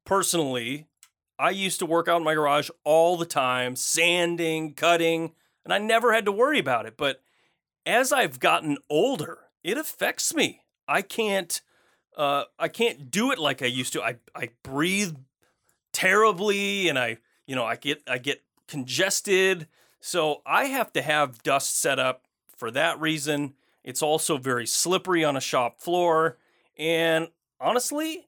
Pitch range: 140-175 Hz